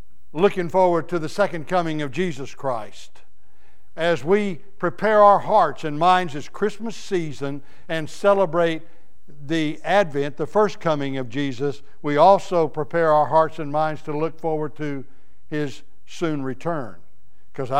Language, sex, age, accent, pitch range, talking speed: English, male, 60-79, American, 145-175 Hz, 145 wpm